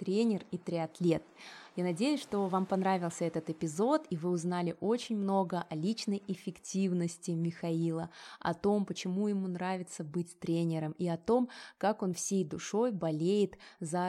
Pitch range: 165-210 Hz